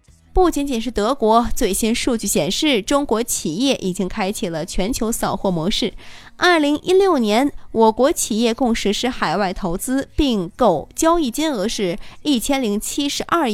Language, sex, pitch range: Chinese, female, 190-270 Hz